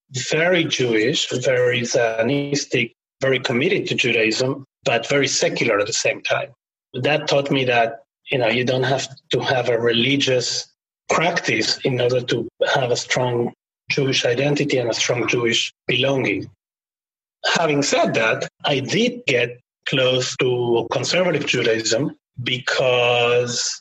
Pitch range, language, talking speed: 120-145 Hz, English, 135 wpm